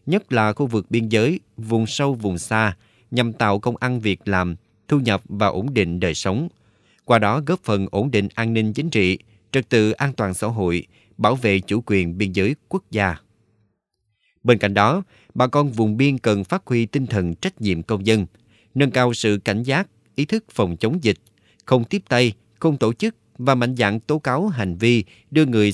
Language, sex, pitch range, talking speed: Vietnamese, male, 100-125 Hz, 205 wpm